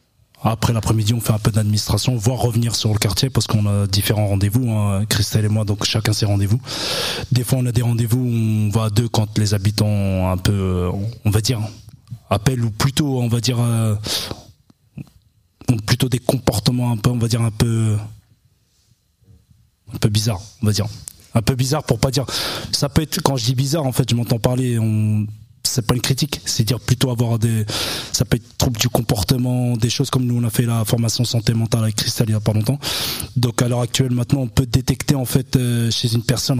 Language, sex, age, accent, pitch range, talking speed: French, male, 20-39, French, 110-130 Hz, 215 wpm